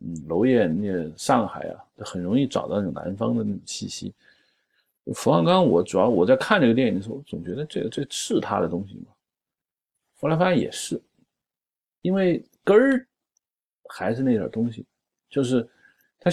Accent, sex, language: native, male, Chinese